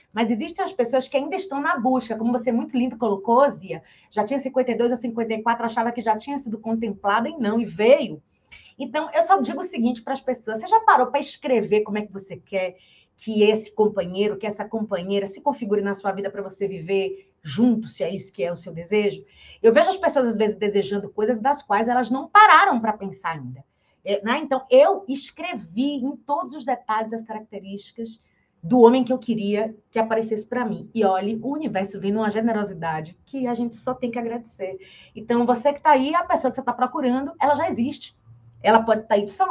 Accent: Brazilian